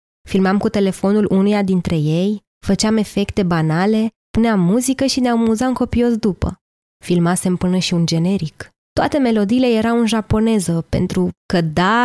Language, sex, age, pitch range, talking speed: Romanian, female, 20-39, 185-230 Hz, 150 wpm